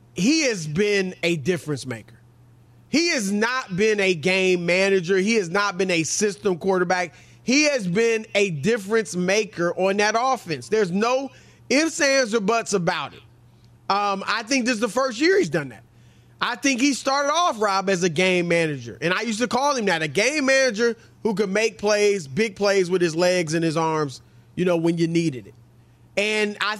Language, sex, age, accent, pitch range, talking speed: English, male, 30-49, American, 175-245 Hz, 195 wpm